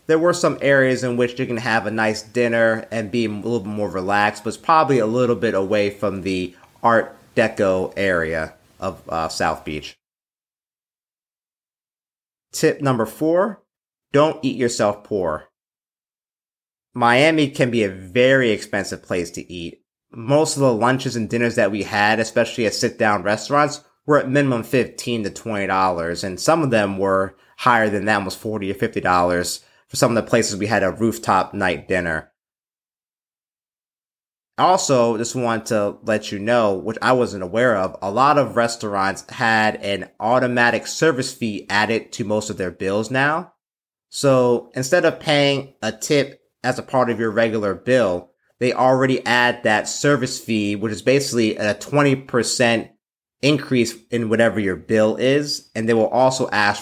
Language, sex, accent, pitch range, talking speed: English, male, American, 105-130 Hz, 165 wpm